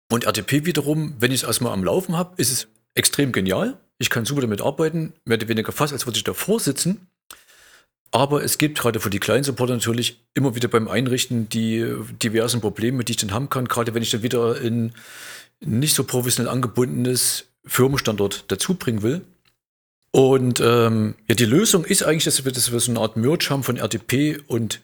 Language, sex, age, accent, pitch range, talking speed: German, male, 40-59, German, 115-145 Hz, 200 wpm